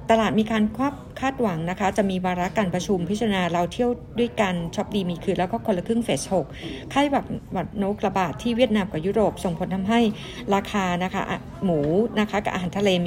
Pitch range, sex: 185-225 Hz, female